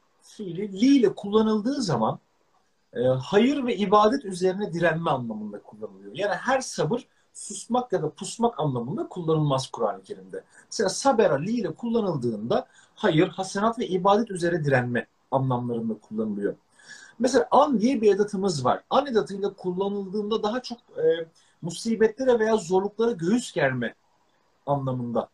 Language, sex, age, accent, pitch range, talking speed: Turkish, male, 40-59, native, 170-240 Hz, 130 wpm